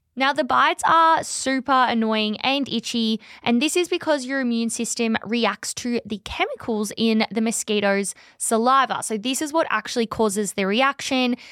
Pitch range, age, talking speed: 205-255 Hz, 20-39, 160 wpm